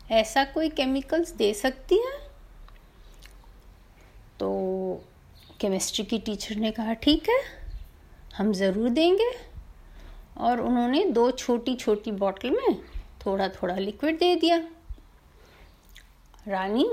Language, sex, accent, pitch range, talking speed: Hindi, female, native, 205-295 Hz, 105 wpm